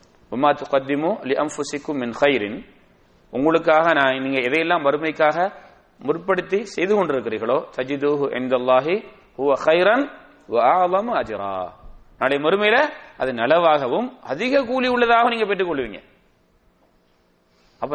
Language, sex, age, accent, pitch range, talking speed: English, male, 30-49, Indian, 145-220 Hz, 105 wpm